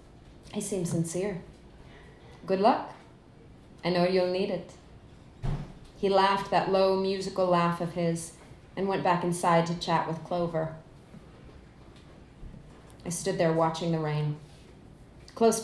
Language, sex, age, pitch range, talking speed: English, female, 30-49, 165-210 Hz, 125 wpm